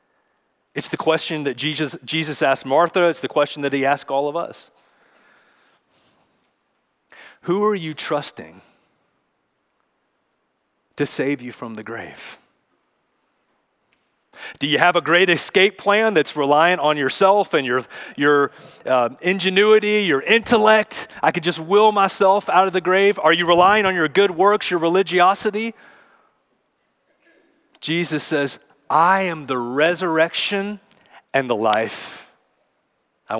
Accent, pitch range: American, 130-185 Hz